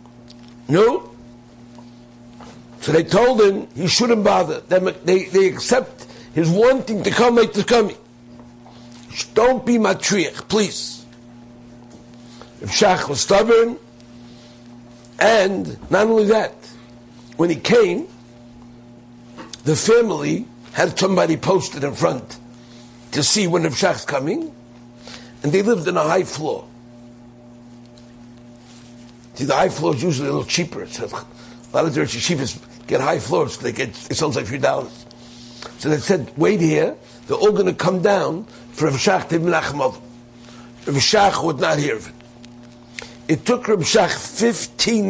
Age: 60-79